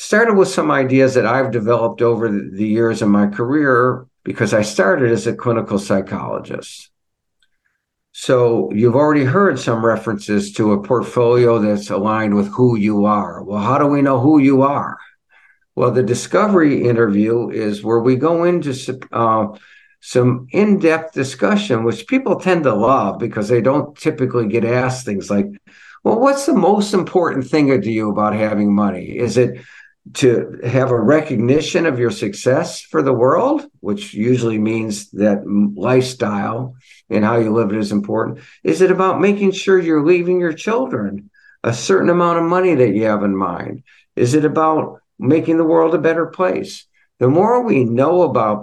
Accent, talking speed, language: American, 170 wpm, English